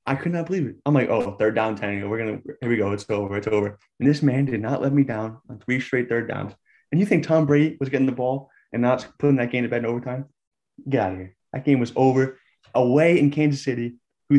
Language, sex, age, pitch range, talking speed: English, male, 20-39, 115-145 Hz, 260 wpm